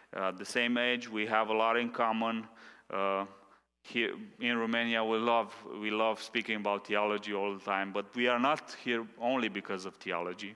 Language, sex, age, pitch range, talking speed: English, male, 30-49, 95-125 Hz, 190 wpm